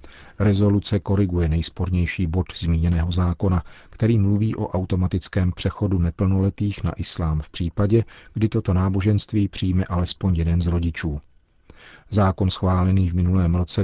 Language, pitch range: Czech, 85-95 Hz